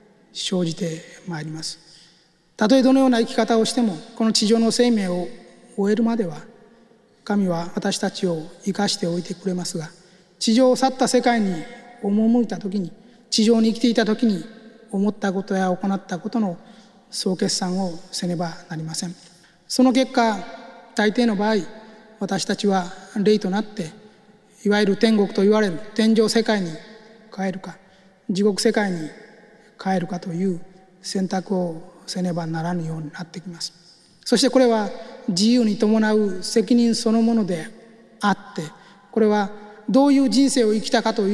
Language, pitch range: Japanese, 185-230 Hz